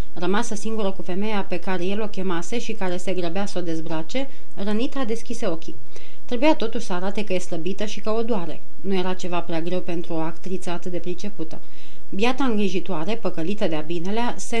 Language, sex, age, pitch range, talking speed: Romanian, female, 30-49, 180-225 Hz, 195 wpm